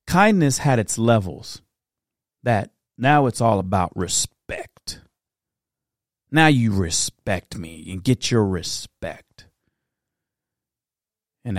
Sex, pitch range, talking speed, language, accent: male, 95-120 Hz, 100 wpm, English, American